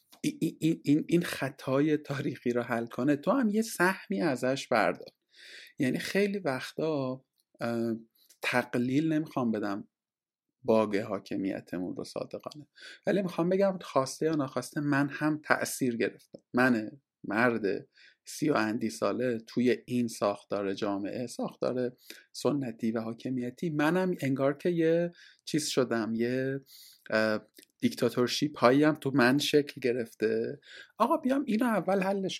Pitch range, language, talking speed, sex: 115-155 Hz, Persian, 120 wpm, male